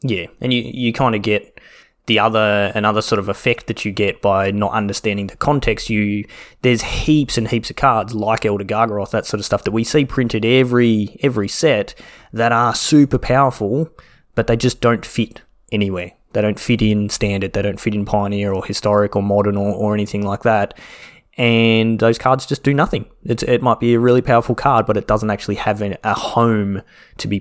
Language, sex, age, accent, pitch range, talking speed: English, male, 20-39, Australian, 100-115 Hz, 200 wpm